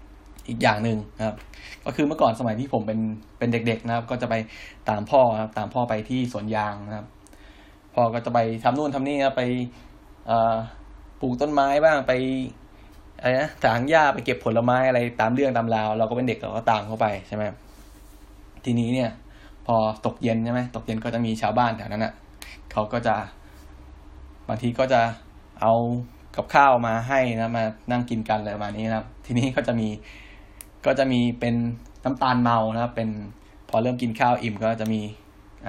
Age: 10-29